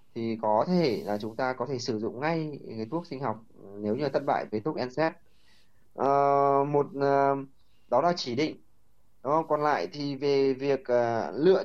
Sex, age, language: male, 20-39, Vietnamese